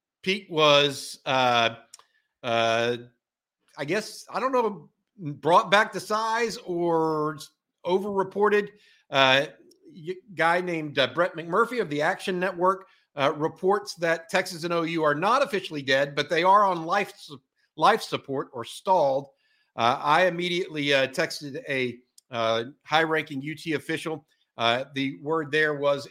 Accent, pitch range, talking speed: American, 135-175 Hz, 140 wpm